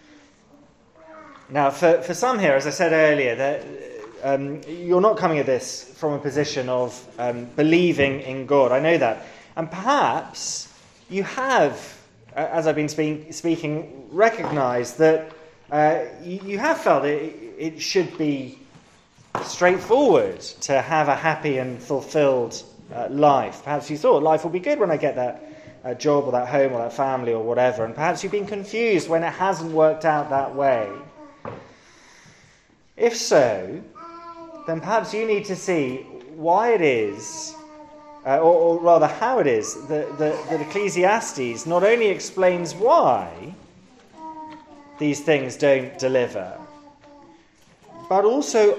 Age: 20-39